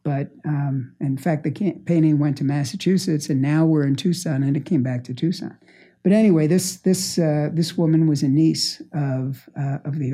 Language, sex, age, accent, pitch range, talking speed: English, male, 60-79, American, 140-165 Hz, 200 wpm